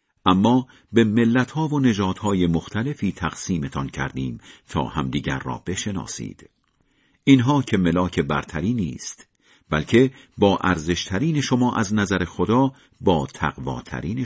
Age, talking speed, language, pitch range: 50-69, 115 wpm, Persian, 85-120 Hz